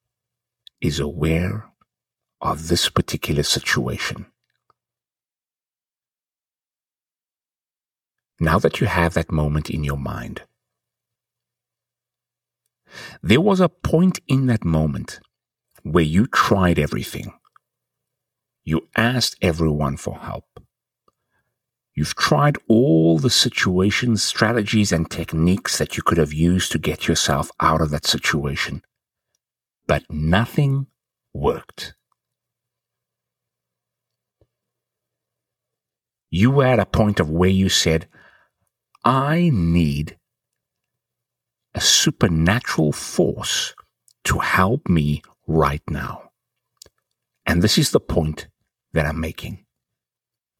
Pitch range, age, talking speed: 80-120 Hz, 60-79, 95 wpm